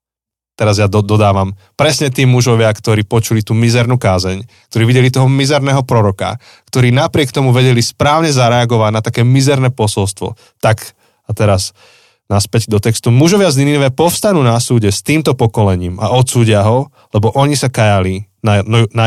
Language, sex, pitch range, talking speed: Slovak, male, 105-135 Hz, 160 wpm